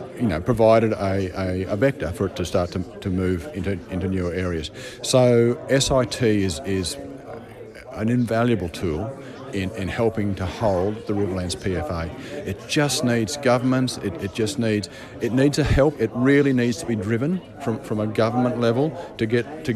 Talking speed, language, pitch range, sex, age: 175 wpm, English, 95-120 Hz, male, 50-69